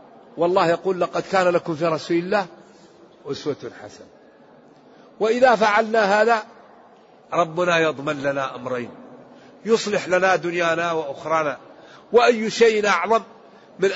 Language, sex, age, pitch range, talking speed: Arabic, male, 50-69, 155-180 Hz, 110 wpm